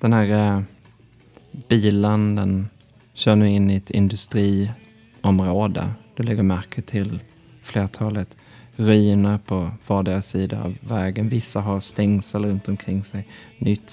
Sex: male